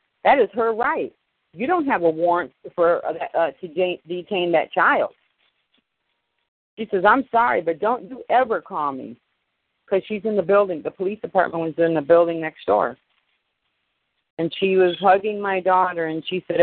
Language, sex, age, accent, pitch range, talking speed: English, female, 40-59, American, 160-190 Hz, 175 wpm